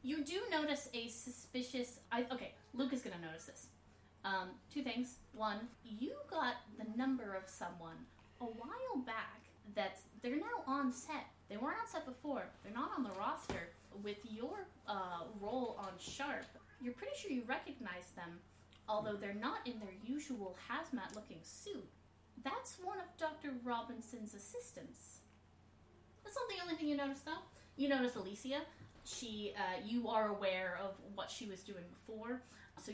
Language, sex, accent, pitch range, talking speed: English, female, American, 190-260 Hz, 165 wpm